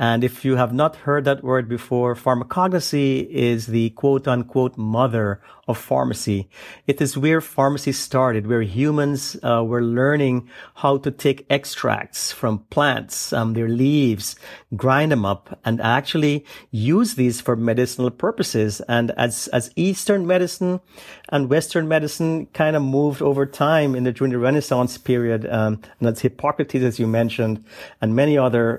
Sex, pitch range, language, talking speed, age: male, 115-145 Hz, English, 155 wpm, 50-69